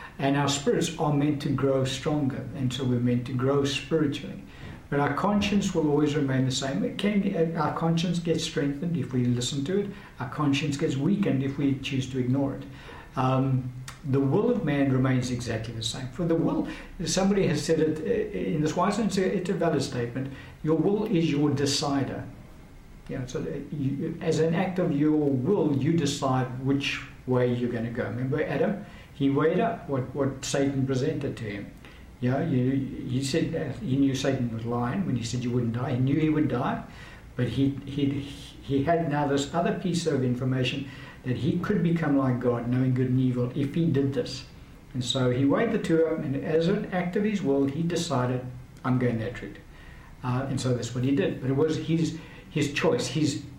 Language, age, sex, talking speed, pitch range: English, 60-79, male, 205 wpm, 130-160 Hz